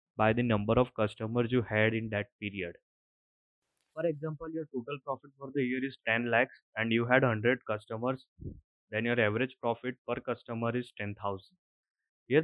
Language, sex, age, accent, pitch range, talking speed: English, male, 20-39, Indian, 110-130 Hz, 170 wpm